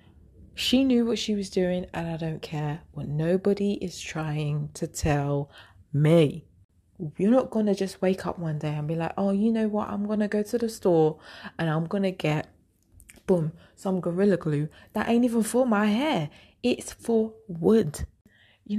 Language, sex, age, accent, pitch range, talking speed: English, female, 20-39, British, 150-215 Hz, 190 wpm